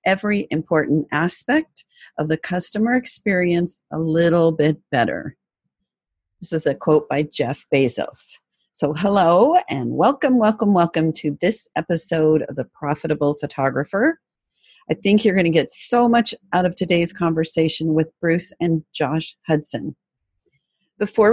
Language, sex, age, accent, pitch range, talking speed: English, female, 40-59, American, 160-225 Hz, 140 wpm